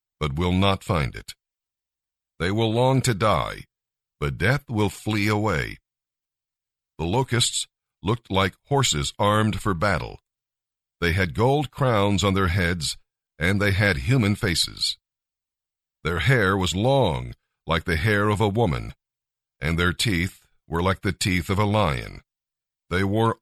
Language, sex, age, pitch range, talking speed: English, male, 50-69, 90-115 Hz, 145 wpm